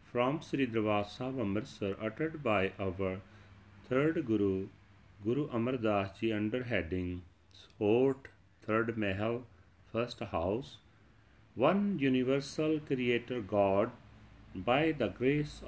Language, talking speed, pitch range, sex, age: Punjabi, 110 wpm, 100-130 Hz, male, 40-59